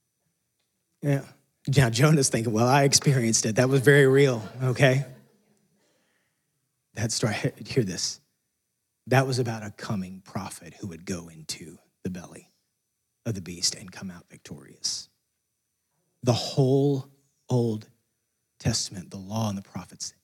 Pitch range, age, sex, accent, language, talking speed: 100-125 Hz, 30-49, male, American, English, 130 wpm